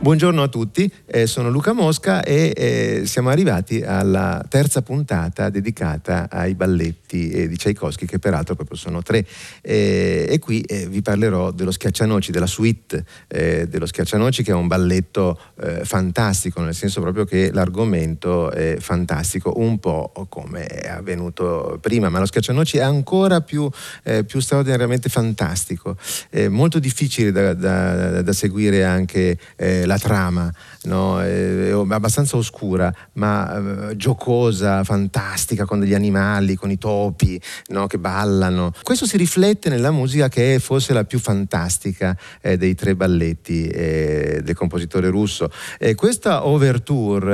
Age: 30-49